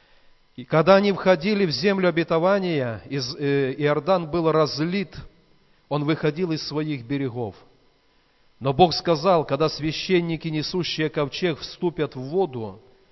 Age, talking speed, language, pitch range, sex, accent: 40-59, 120 wpm, Russian, 135-170 Hz, male, native